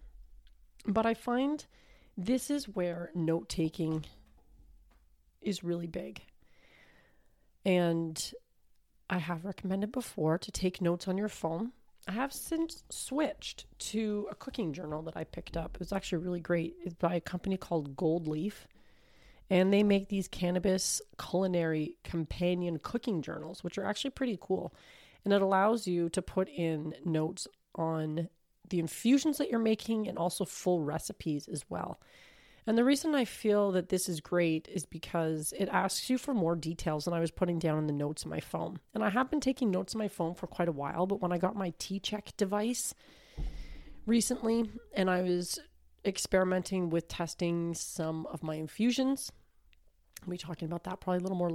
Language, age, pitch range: English, 30-49, 165-210 Hz